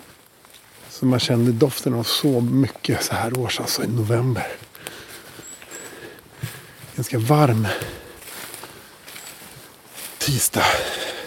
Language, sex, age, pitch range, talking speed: English, male, 50-69, 120-145 Hz, 90 wpm